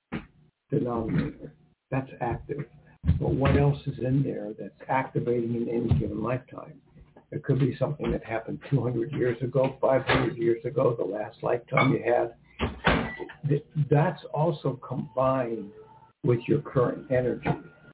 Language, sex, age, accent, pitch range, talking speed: English, male, 60-79, American, 120-150 Hz, 130 wpm